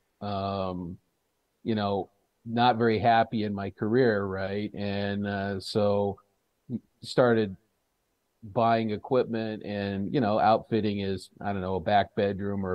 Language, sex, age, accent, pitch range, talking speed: English, male, 50-69, American, 100-120 Hz, 130 wpm